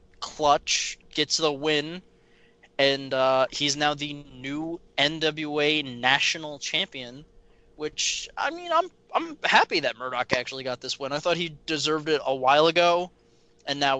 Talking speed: 150 wpm